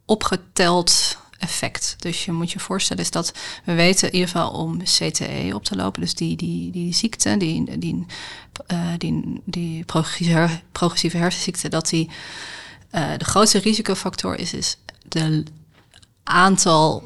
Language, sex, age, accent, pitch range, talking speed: Dutch, female, 30-49, Dutch, 150-175 Hz, 145 wpm